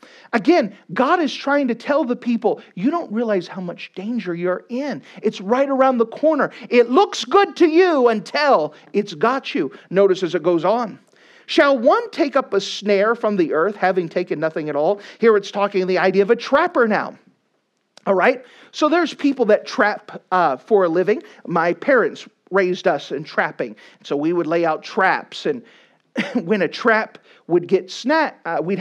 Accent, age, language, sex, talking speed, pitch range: American, 40-59, English, male, 185 wpm, 180-265 Hz